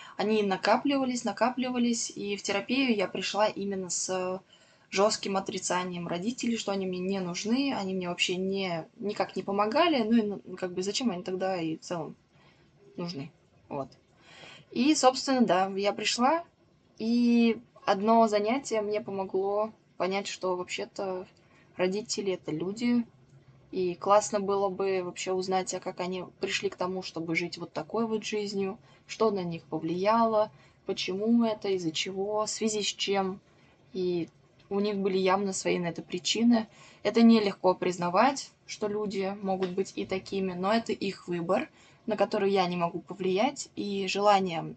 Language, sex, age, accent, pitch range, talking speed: Russian, female, 20-39, native, 185-215 Hz, 155 wpm